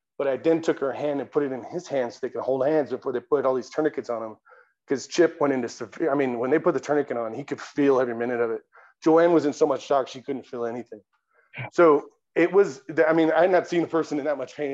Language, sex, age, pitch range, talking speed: English, male, 30-49, 125-150 Hz, 280 wpm